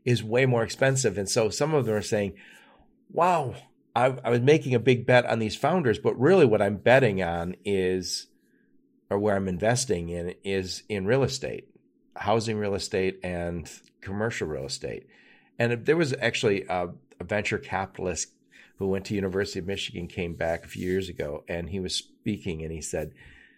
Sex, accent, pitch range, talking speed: male, American, 95-125 Hz, 185 wpm